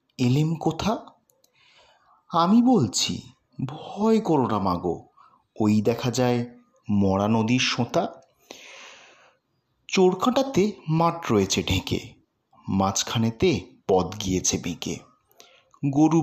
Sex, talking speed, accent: male, 80 wpm, Indian